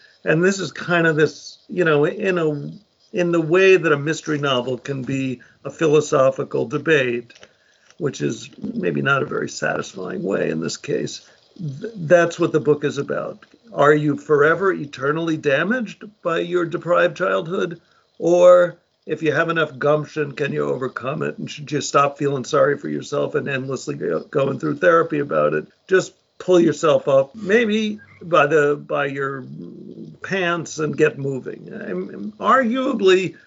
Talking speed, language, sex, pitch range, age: 155 wpm, English, male, 145-185 Hz, 50-69